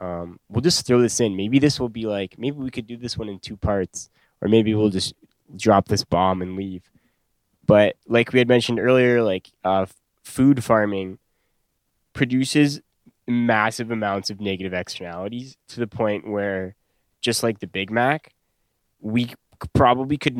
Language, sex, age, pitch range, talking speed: English, male, 10-29, 100-120 Hz, 170 wpm